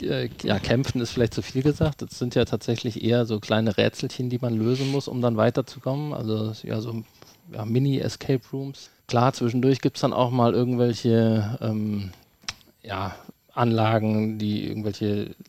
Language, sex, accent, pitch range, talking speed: German, male, German, 105-125 Hz, 155 wpm